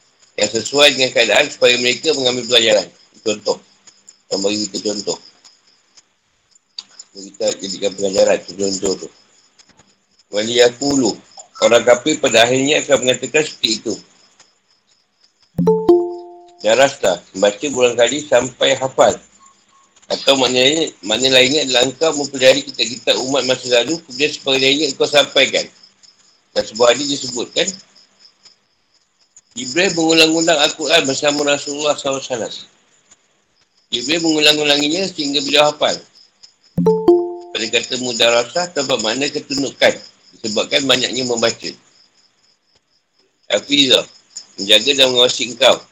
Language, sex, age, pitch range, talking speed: Malay, male, 50-69, 120-150 Hz, 110 wpm